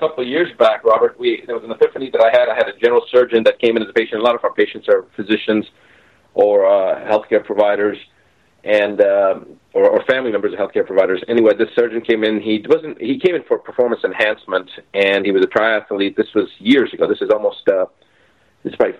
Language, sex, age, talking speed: English, male, 40-59, 225 wpm